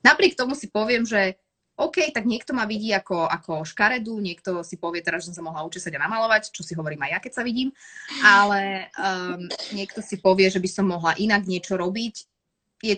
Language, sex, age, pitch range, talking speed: Slovak, female, 20-39, 170-235 Hz, 210 wpm